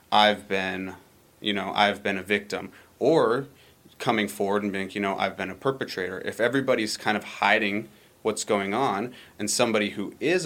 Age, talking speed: 30-49, 180 wpm